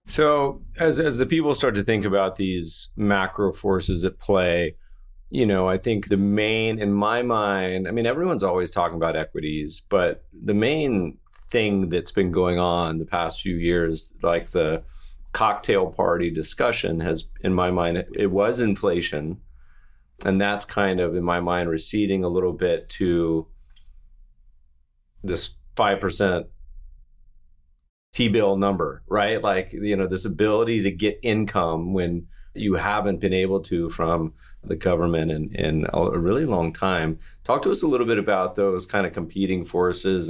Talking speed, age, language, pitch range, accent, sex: 160 wpm, 30-49, English, 85-100 Hz, American, male